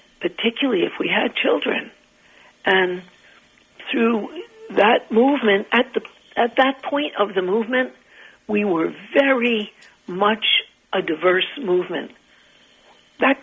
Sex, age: female, 60-79